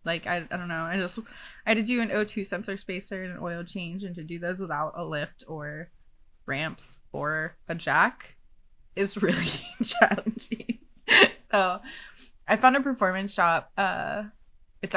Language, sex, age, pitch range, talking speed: English, female, 20-39, 170-215 Hz, 170 wpm